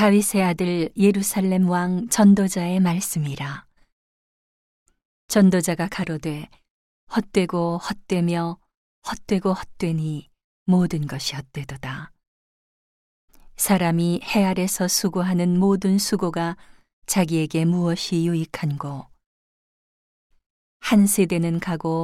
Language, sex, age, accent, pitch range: Korean, female, 40-59, native, 160-185 Hz